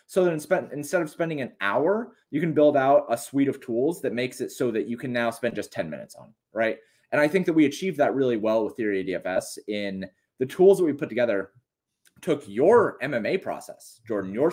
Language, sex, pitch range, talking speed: English, male, 110-150 Hz, 225 wpm